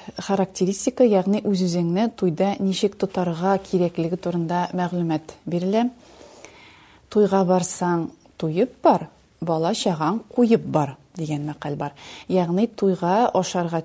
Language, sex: Russian, female